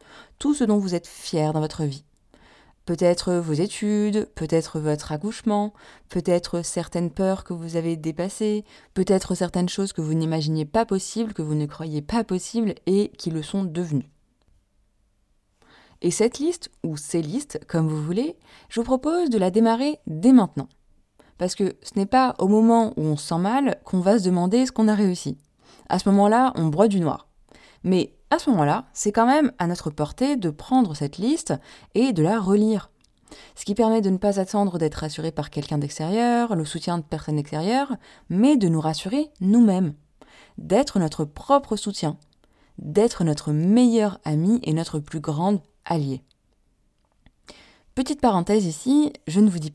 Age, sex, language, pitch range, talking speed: 20-39, female, French, 160-220 Hz, 175 wpm